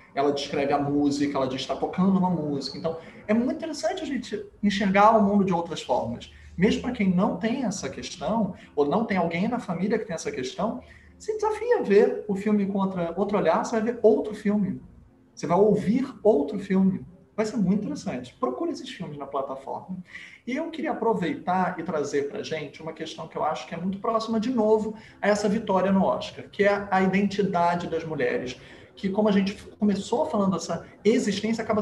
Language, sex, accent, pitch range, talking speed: Portuguese, male, Brazilian, 170-220 Hz, 200 wpm